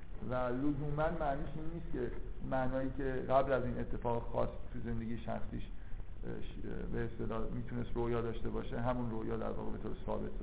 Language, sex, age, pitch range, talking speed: Persian, male, 50-69, 115-145 Hz, 155 wpm